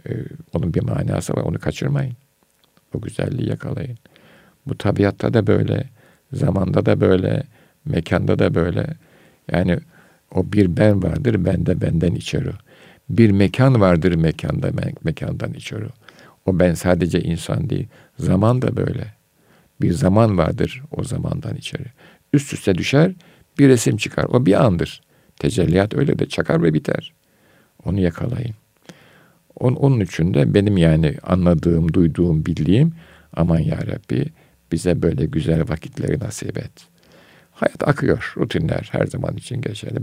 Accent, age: native, 50-69